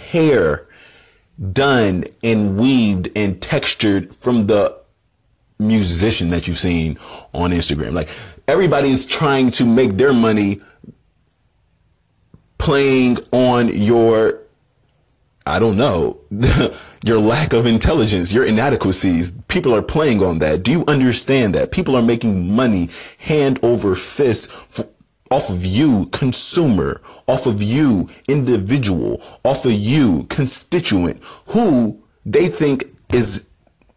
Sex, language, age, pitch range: male, English, 30-49, 90-125 Hz